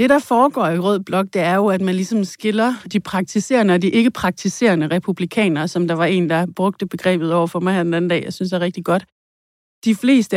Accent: native